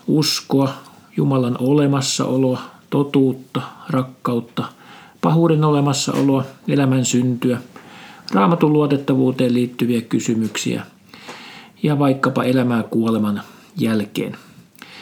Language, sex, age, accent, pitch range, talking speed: Finnish, male, 50-69, native, 130-155 Hz, 70 wpm